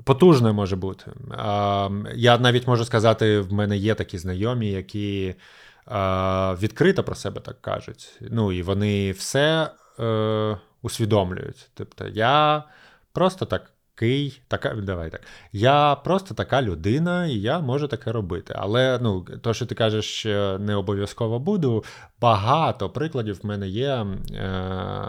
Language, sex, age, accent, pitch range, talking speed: Ukrainian, male, 20-39, native, 100-130 Hz, 125 wpm